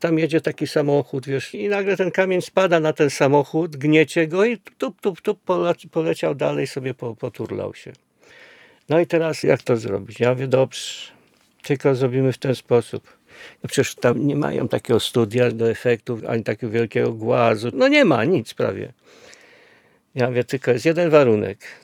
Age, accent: 50-69, native